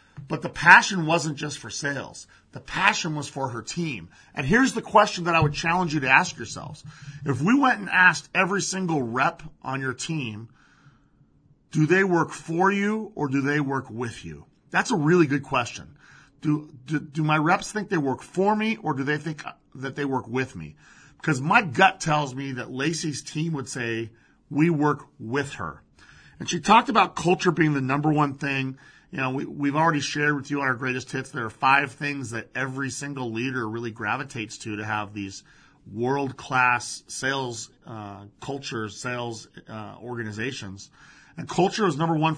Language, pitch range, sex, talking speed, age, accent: English, 130-170 Hz, male, 190 wpm, 40-59, American